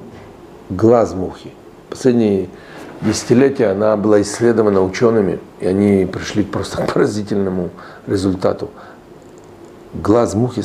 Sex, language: male, Russian